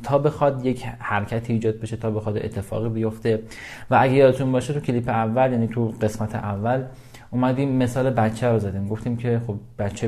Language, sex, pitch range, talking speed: Persian, male, 110-125 Hz, 180 wpm